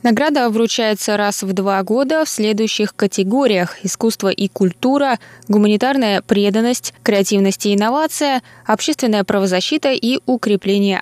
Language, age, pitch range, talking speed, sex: Russian, 20-39, 185-235 Hz, 115 wpm, female